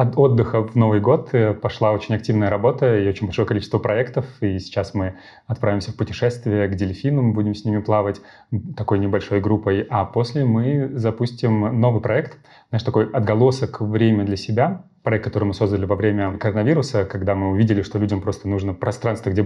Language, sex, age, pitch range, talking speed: Russian, male, 30-49, 105-120 Hz, 175 wpm